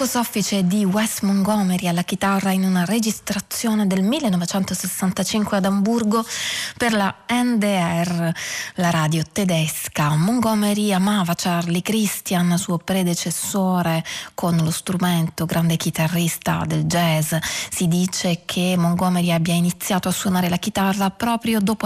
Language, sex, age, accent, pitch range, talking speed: Italian, female, 20-39, native, 170-200 Hz, 120 wpm